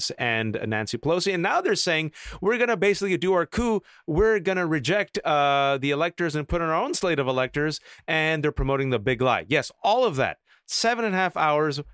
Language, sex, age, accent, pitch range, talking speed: English, male, 30-49, American, 135-205 Hz, 215 wpm